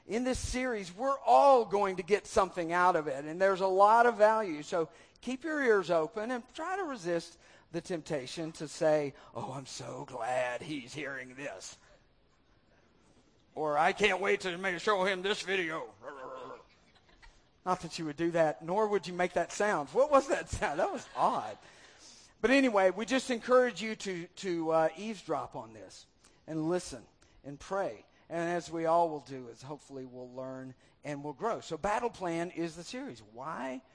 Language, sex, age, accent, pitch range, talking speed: English, male, 50-69, American, 155-215 Hz, 180 wpm